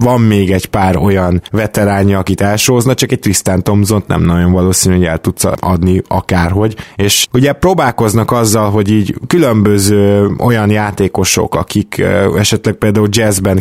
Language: Hungarian